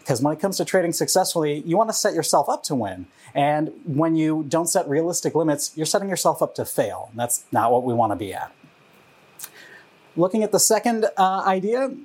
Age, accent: 30-49, American